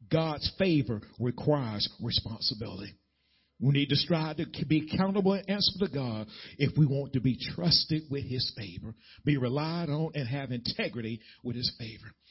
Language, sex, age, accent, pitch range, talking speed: English, male, 50-69, American, 125-165 Hz, 160 wpm